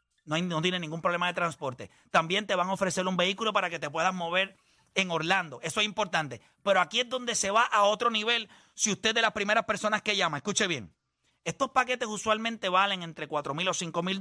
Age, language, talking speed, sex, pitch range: 30-49, Spanish, 225 wpm, male, 160-210 Hz